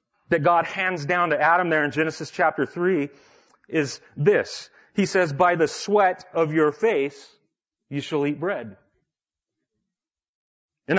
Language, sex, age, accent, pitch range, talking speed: English, male, 40-59, American, 155-225 Hz, 140 wpm